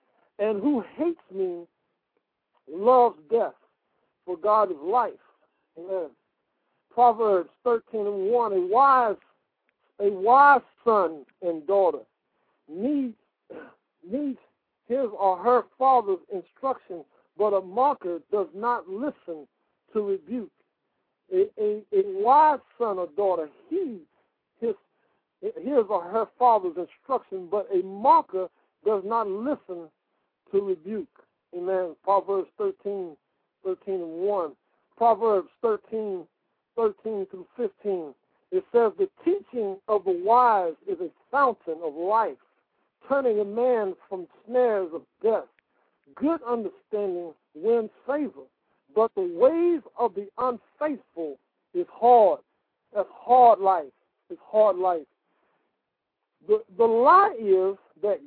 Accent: American